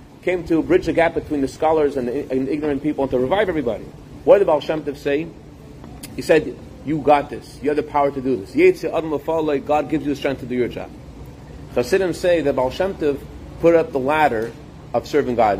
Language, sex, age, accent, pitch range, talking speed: English, male, 30-49, American, 135-165 Hz, 225 wpm